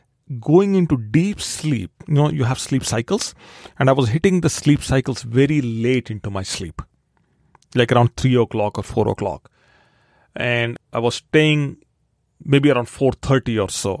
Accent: Indian